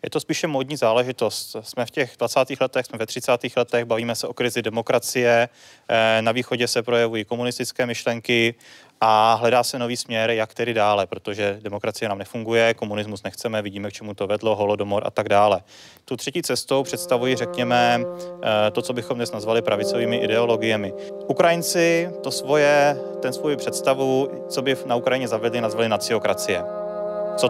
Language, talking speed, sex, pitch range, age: Czech, 160 wpm, male, 105-130 Hz, 20-39